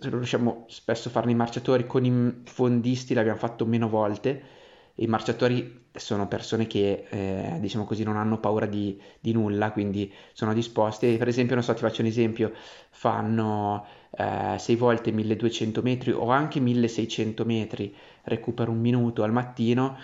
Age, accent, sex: 20-39, native, male